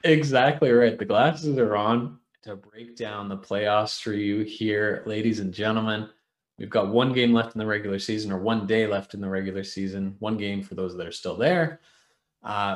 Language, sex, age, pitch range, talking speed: English, male, 20-39, 105-130 Hz, 200 wpm